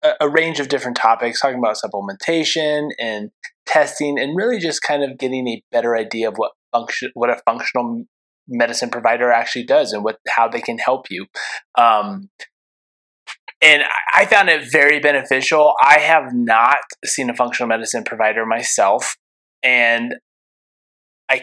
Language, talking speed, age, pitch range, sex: English, 150 wpm, 20-39, 115-135 Hz, male